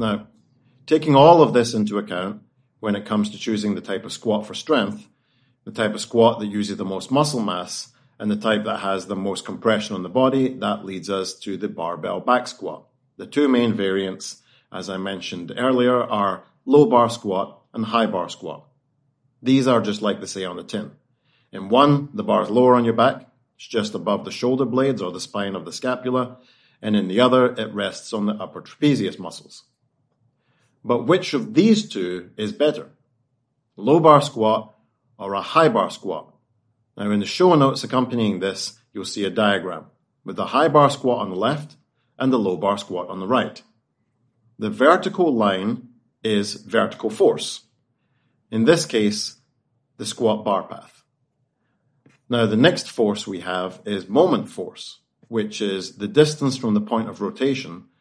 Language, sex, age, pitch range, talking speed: English, male, 40-59, 105-130 Hz, 185 wpm